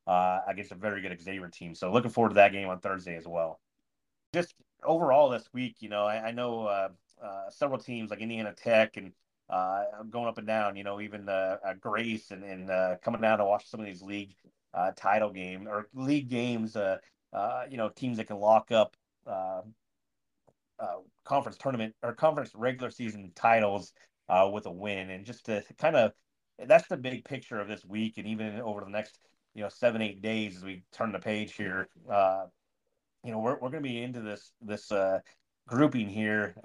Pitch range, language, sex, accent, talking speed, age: 100-115 Hz, English, male, American, 210 wpm, 30-49